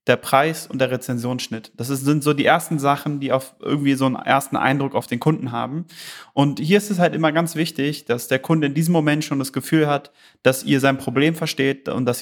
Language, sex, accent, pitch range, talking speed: German, male, German, 130-155 Hz, 230 wpm